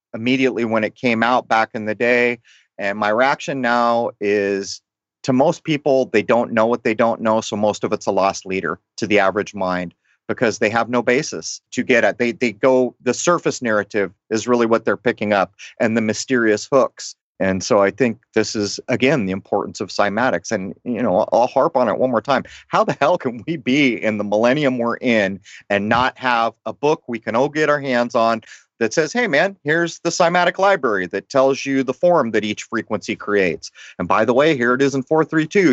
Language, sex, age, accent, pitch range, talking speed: English, male, 30-49, American, 105-135 Hz, 220 wpm